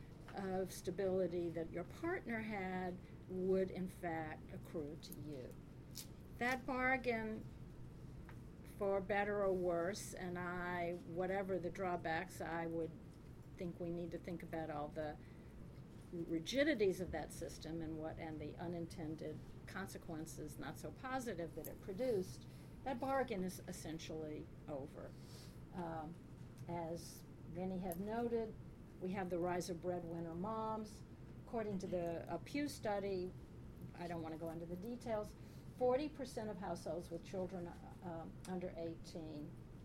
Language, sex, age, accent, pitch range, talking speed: English, female, 50-69, American, 160-195 Hz, 135 wpm